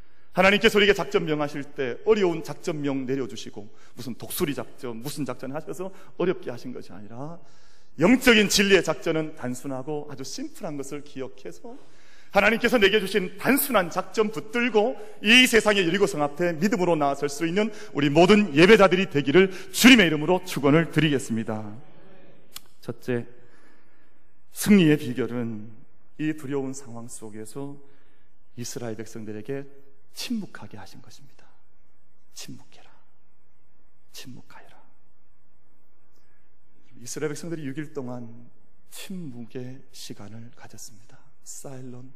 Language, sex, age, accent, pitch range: Korean, male, 30-49, native, 115-170 Hz